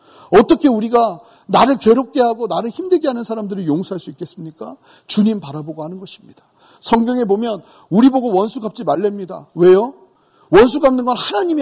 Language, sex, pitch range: Korean, male, 210-285 Hz